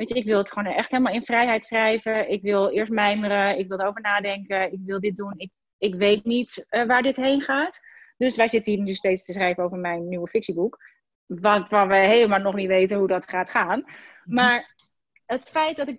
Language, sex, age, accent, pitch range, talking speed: Dutch, female, 30-49, Dutch, 185-240 Hz, 225 wpm